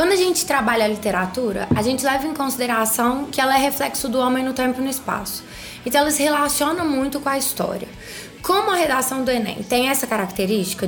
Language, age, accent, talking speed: Portuguese, 20-39, Brazilian, 205 wpm